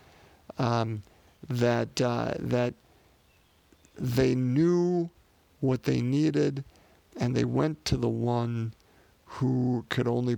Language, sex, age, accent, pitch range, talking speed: English, male, 50-69, American, 110-145 Hz, 105 wpm